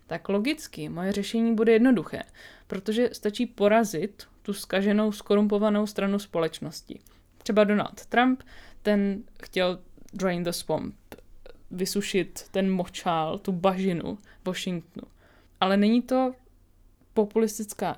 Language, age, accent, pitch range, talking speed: Czech, 20-39, native, 185-225 Hz, 105 wpm